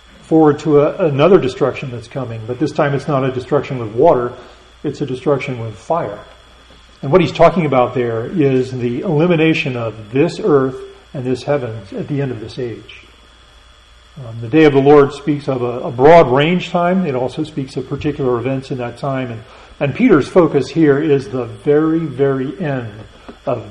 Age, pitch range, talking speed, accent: 40-59, 115-145 Hz, 190 wpm, American